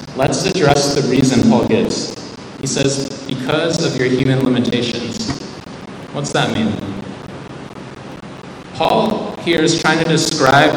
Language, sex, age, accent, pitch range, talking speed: English, male, 20-39, American, 125-160 Hz, 125 wpm